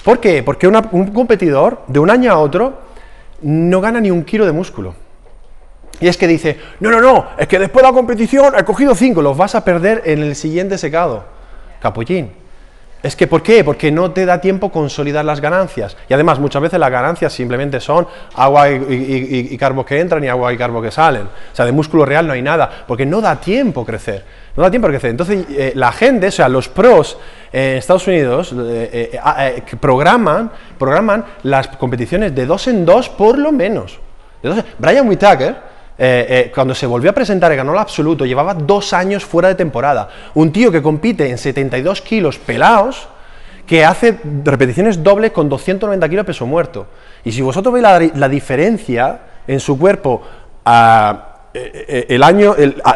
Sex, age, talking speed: male, 30-49, 195 wpm